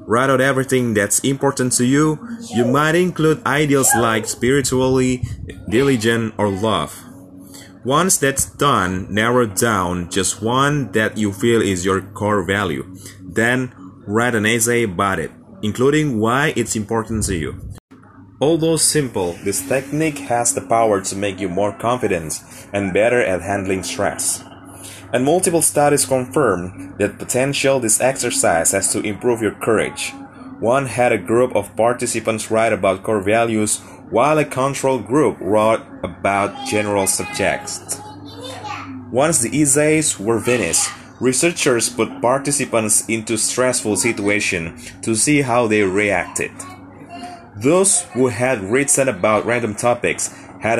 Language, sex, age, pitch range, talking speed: Indonesian, male, 20-39, 100-135 Hz, 135 wpm